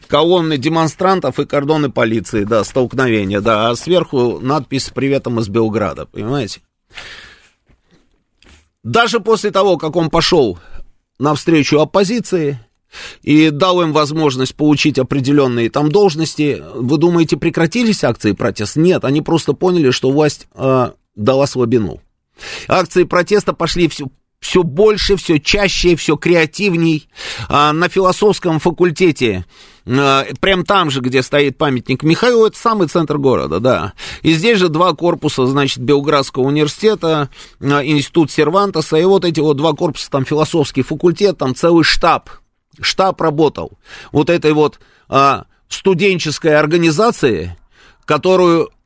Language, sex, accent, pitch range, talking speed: Russian, male, native, 135-175 Hz, 125 wpm